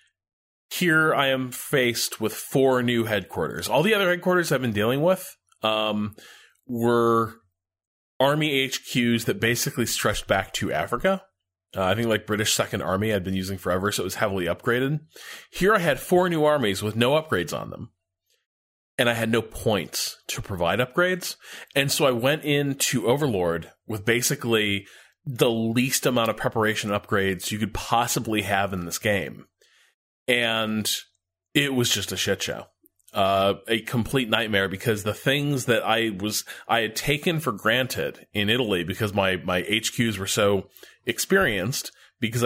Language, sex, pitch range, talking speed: English, male, 100-130 Hz, 165 wpm